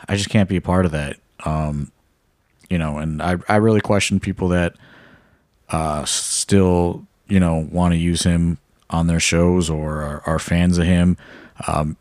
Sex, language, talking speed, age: male, English, 180 wpm, 30-49